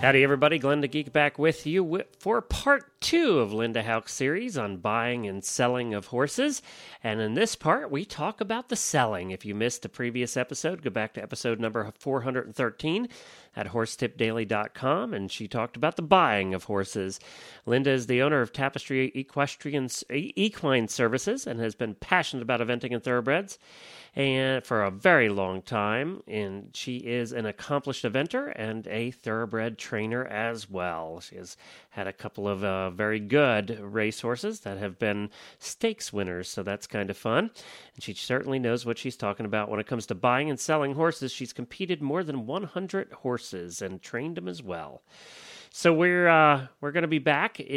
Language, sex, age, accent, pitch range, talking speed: English, male, 40-59, American, 110-150 Hz, 180 wpm